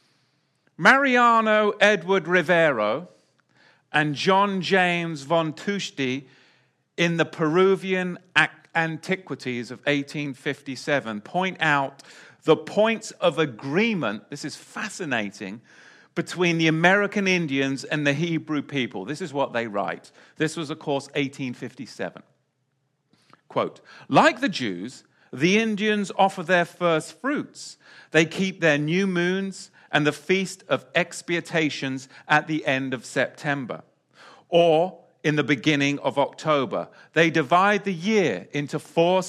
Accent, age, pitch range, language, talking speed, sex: British, 40-59, 145-190 Hz, English, 120 wpm, male